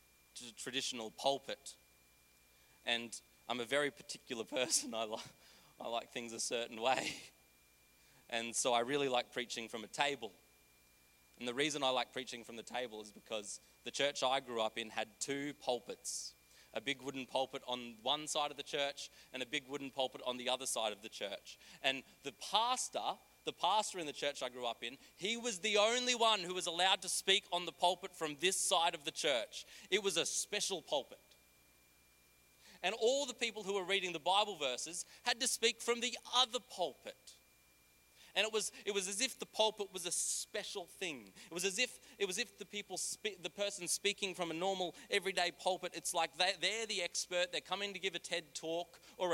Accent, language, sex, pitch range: Australian, English, male, 120-190 Hz